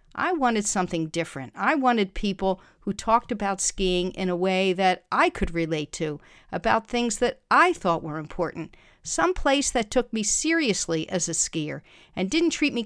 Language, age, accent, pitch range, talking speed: English, 50-69, American, 175-235 Hz, 180 wpm